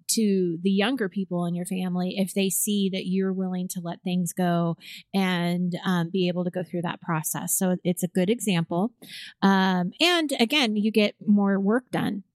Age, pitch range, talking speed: 30-49, 185-225 Hz, 190 wpm